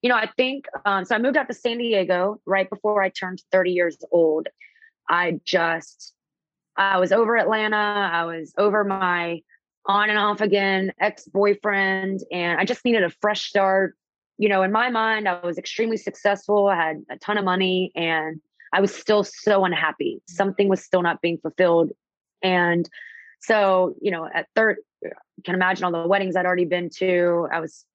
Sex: female